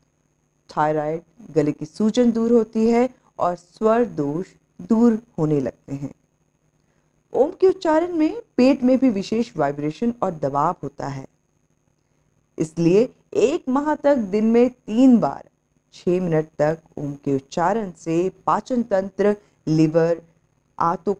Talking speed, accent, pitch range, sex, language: 130 wpm, native, 150-225 Hz, female, Hindi